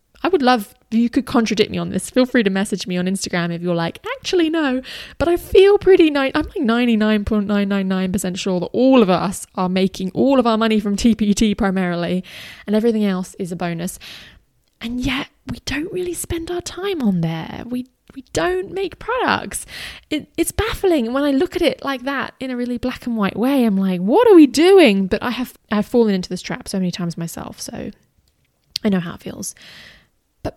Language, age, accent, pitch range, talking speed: English, 20-39, British, 185-250 Hz, 210 wpm